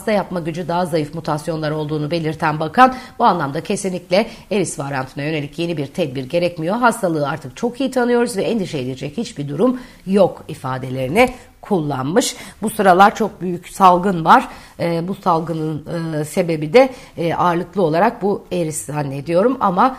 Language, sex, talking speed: Turkish, female, 145 wpm